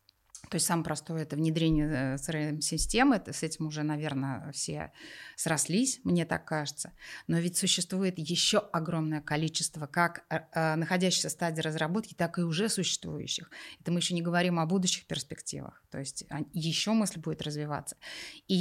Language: Russian